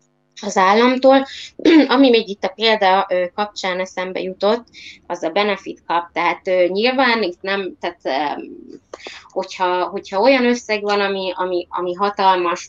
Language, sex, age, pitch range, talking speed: Hungarian, female, 20-39, 175-205 Hz, 130 wpm